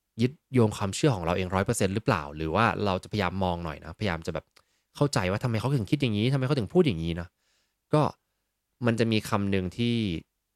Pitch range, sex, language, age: 90-120 Hz, male, Thai, 20-39